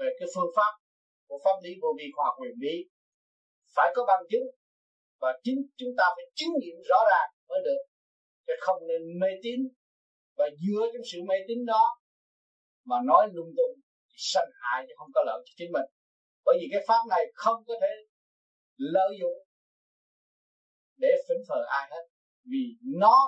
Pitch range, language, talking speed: 185-285 Hz, Vietnamese, 180 wpm